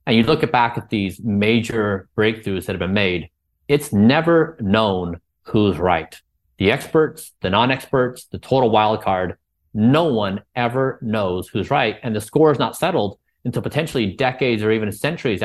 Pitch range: 100-125 Hz